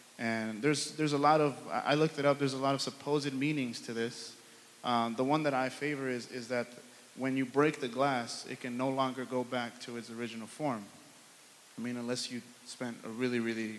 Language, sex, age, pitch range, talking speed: English, male, 20-39, 120-145 Hz, 220 wpm